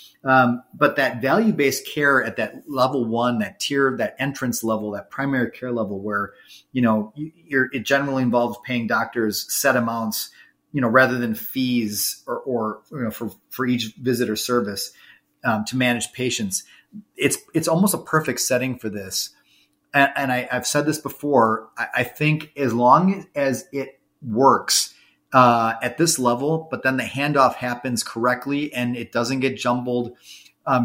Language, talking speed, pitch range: English, 170 wpm, 115-140 Hz